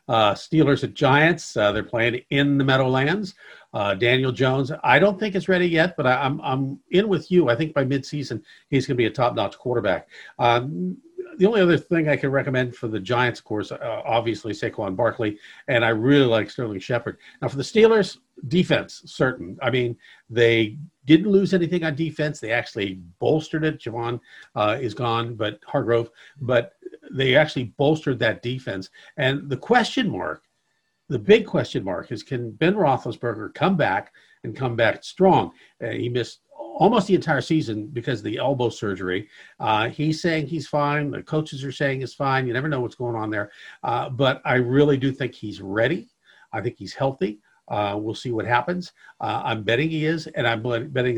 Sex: male